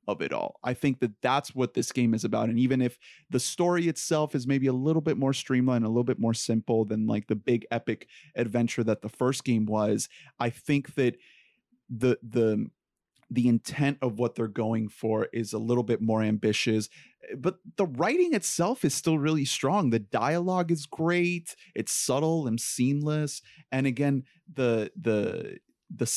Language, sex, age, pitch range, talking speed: English, male, 30-49, 115-145 Hz, 185 wpm